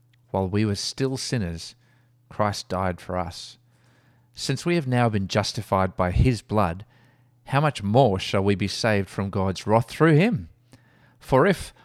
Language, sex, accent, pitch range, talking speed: English, male, Australian, 100-120 Hz, 160 wpm